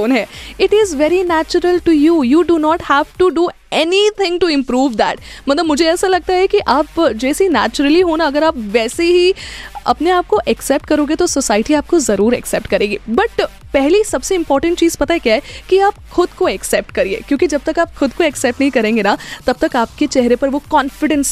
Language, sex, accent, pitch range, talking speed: Hindi, female, native, 240-345 Hz, 205 wpm